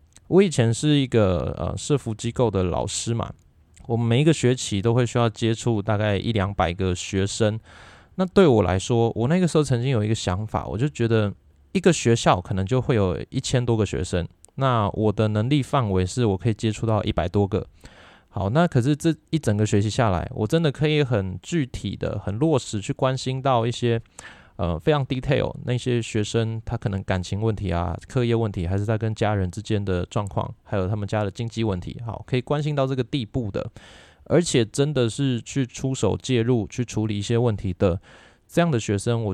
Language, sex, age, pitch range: Chinese, male, 20-39, 100-130 Hz